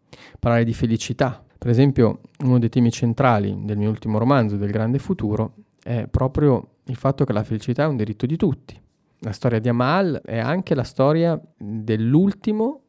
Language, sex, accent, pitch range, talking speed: Italian, male, native, 110-135 Hz, 170 wpm